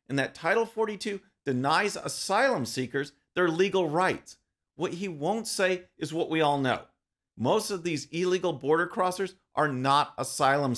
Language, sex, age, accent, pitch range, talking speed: English, male, 40-59, American, 130-190 Hz, 155 wpm